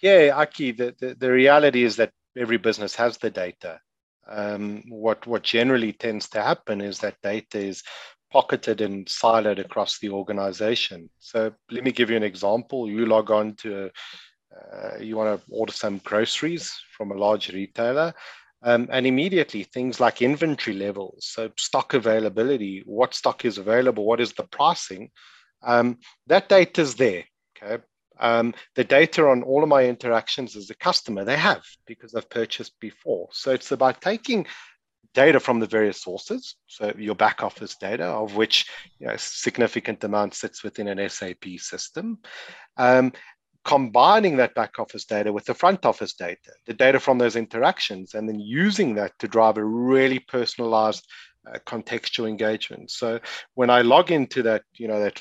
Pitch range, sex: 105-130 Hz, male